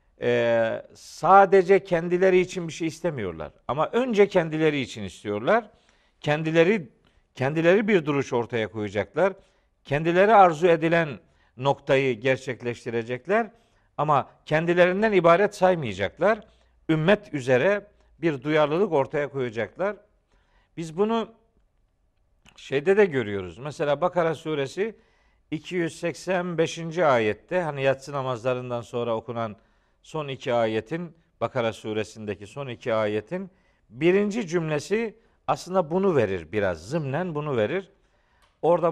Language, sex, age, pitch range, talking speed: Turkish, male, 50-69, 120-190 Hz, 100 wpm